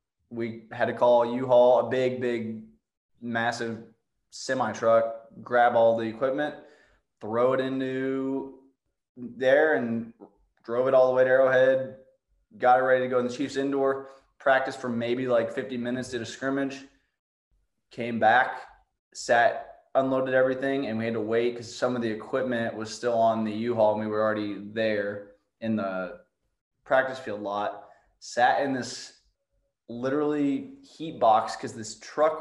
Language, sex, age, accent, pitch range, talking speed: English, male, 20-39, American, 110-130 Hz, 155 wpm